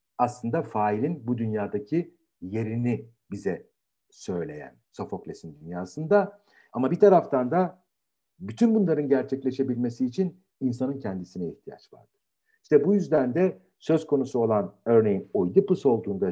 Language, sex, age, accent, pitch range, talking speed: Turkish, male, 60-79, native, 115-160 Hz, 115 wpm